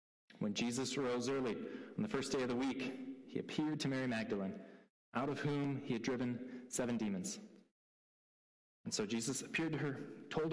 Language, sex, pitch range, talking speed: English, male, 130-165 Hz, 175 wpm